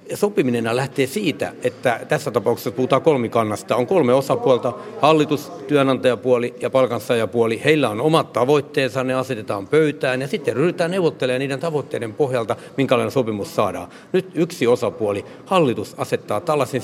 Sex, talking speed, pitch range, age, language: male, 135 wpm, 115-140 Hz, 60-79, Finnish